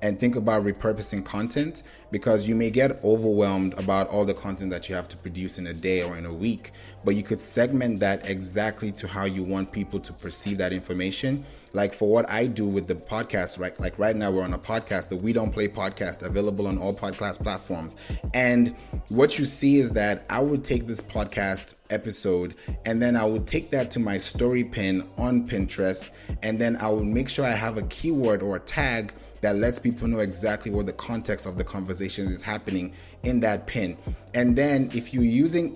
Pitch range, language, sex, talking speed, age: 100-120 Hz, English, male, 210 wpm, 30-49